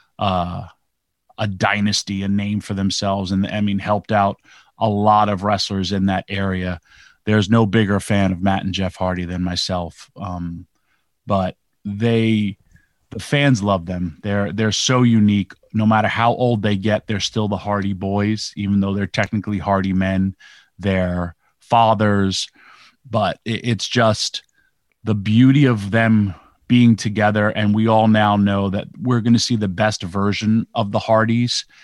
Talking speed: 160 wpm